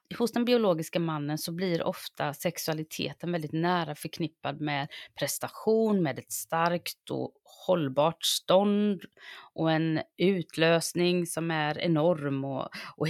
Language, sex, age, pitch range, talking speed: English, female, 30-49, 145-185 Hz, 125 wpm